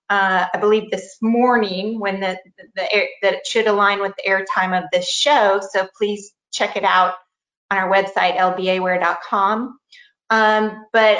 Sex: female